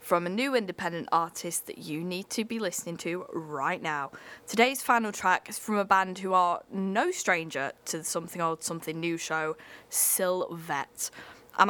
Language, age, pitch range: English, 10-29, 170-235 Hz